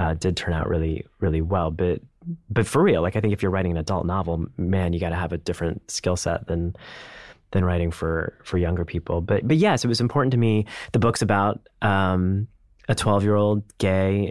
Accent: American